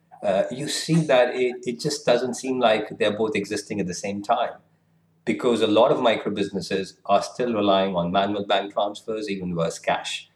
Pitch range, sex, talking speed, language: 100-130 Hz, male, 185 wpm, English